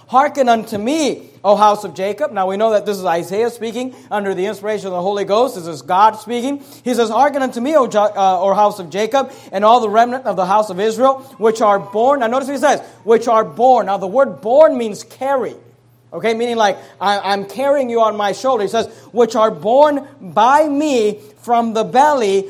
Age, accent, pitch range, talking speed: 40-59, American, 205-255 Hz, 215 wpm